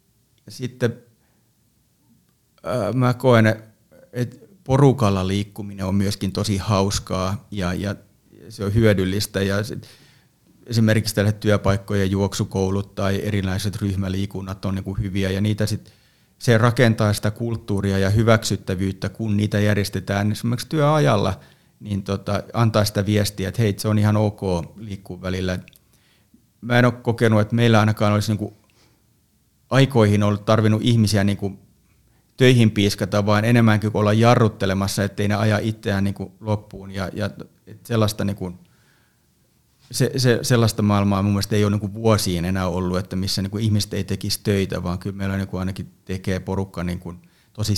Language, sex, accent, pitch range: Finnish, male, native, 95-115 Hz